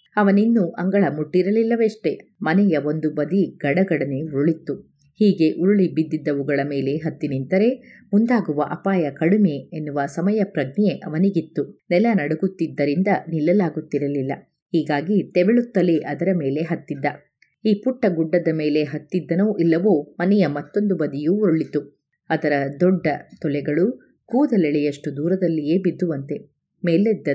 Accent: native